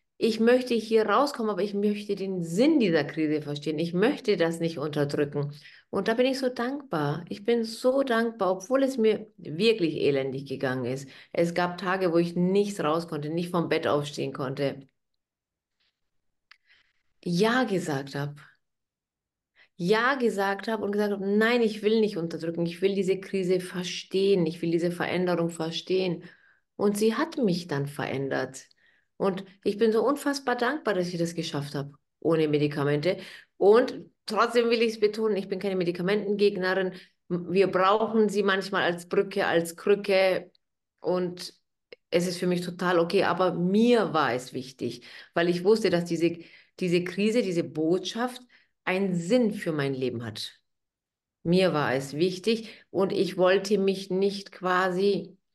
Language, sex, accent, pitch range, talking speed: German, female, German, 165-210 Hz, 155 wpm